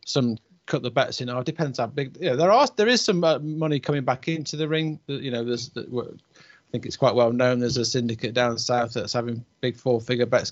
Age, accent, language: 30-49, British, English